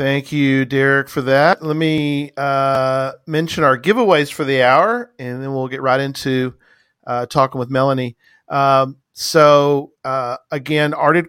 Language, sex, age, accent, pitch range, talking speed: English, male, 40-59, American, 125-145 Hz, 155 wpm